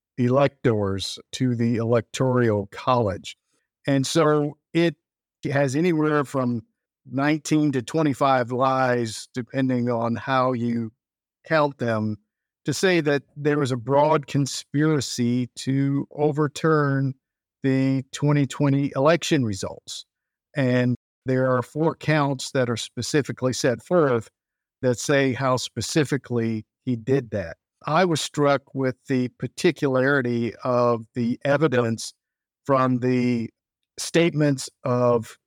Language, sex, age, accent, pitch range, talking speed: English, male, 50-69, American, 125-150 Hz, 110 wpm